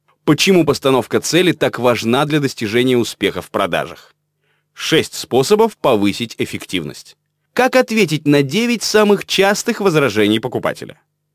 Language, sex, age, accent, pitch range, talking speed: Russian, male, 20-39, native, 120-175 Hz, 115 wpm